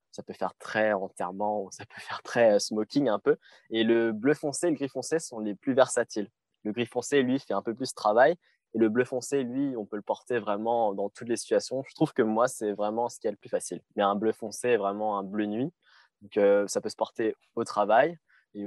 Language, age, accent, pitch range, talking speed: French, 20-39, French, 105-130 Hz, 250 wpm